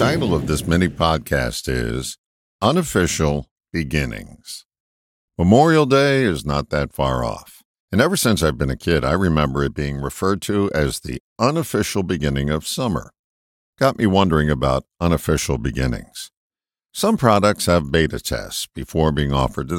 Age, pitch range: 50-69, 75-105 Hz